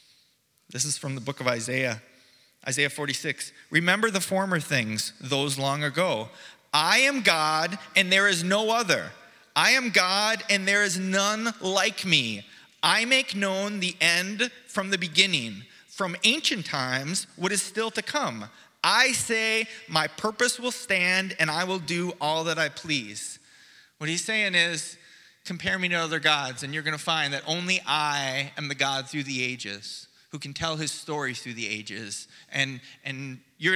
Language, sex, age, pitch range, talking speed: English, male, 30-49, 155-220 Hz, 170 wpm